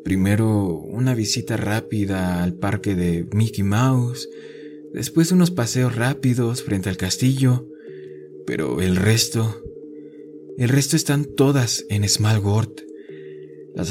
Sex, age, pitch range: male, 20-39, 105-145 Hz